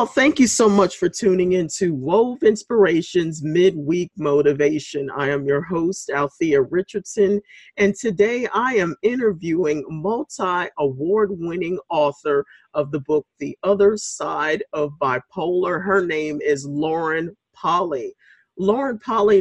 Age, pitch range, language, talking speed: 50-69, 150-210 Hz, English, 125 wpm